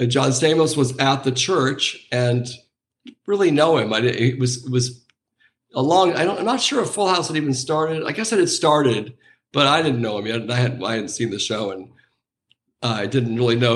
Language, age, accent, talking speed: English, 50-69, American, 230 wpm